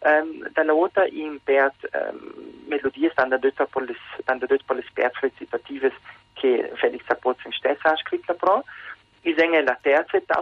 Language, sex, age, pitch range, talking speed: Italian, male, 40-59, 140-215 Hz, 125 wpm